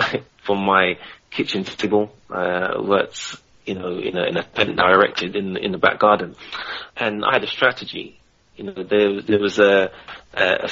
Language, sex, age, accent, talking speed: English, male, 30-49, British, 175 wpm